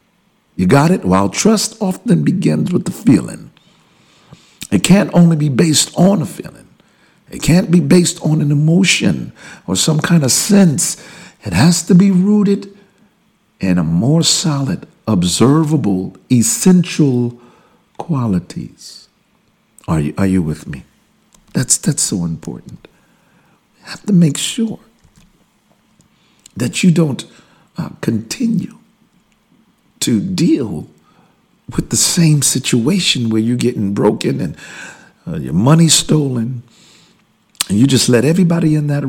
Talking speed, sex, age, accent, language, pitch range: 125 wpm, male, 60-79, American, English, 110-185 Hz